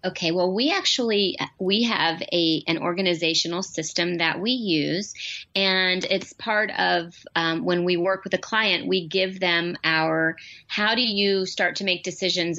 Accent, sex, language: American, female, English